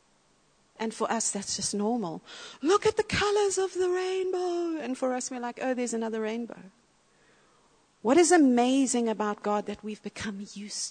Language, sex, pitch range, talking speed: English, female, 210-265 Hz, 170 wpm